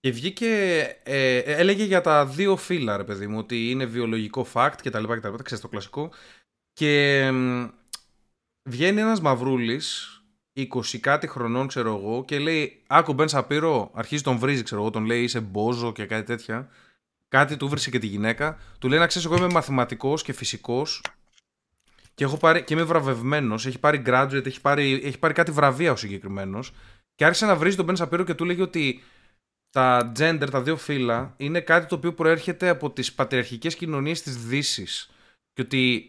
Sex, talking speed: male, 175 wpm